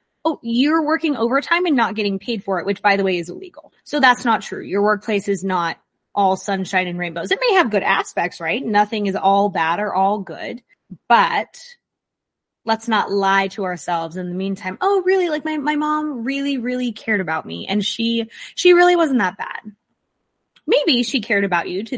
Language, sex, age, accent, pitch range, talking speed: English, female, 20-39, American, 190-240 Hz, 200 wpm